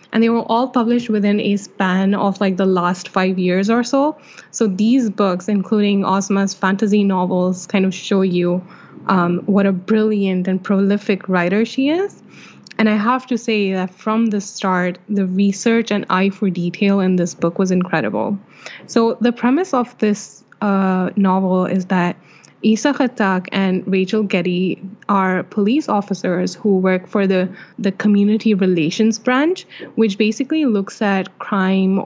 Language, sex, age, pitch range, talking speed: English, female, 10-29, 185-220 Hz, 160 wpm